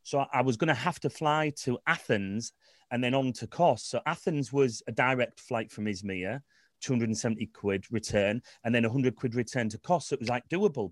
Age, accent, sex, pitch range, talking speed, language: 30-49, British, male, 125-150 Hz, 210 wpm, English